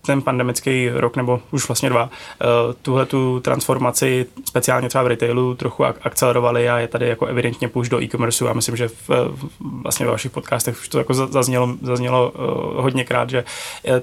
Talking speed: 185 wpm